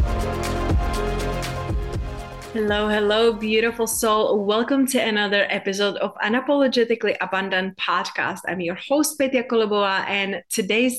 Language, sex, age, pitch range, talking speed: English, female, 30-49, 195-230 Hz, 105 wpm